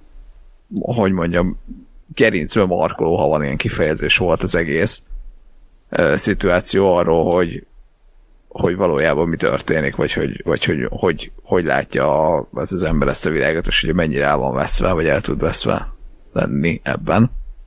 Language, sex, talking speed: Hungarian, male, 145 wpm